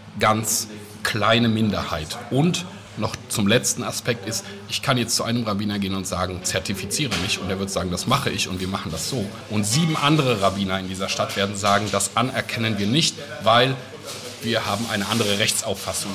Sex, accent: male, German